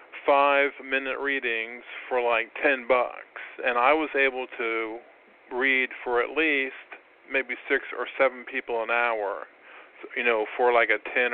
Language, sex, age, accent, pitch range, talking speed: English, male, 40-59, American, 120-135 Hz, 155 wpm